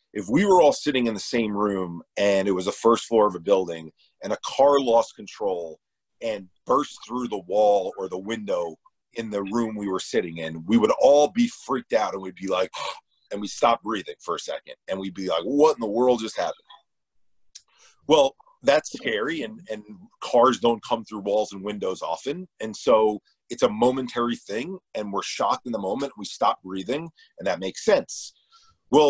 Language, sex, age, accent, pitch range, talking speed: English, male, 40-59, American, 105-150 Hz, 200 wpm